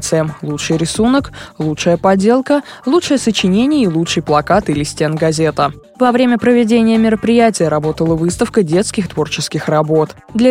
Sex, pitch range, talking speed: female, 155-230 Hz, 125 wpm